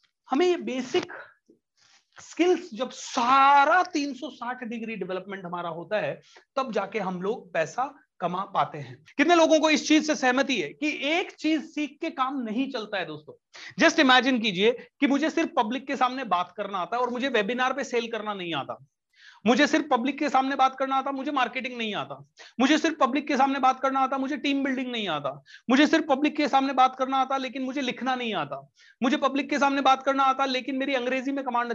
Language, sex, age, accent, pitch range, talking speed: Hindi, male, 30-49, native, 225-275 Hz, 205 wpm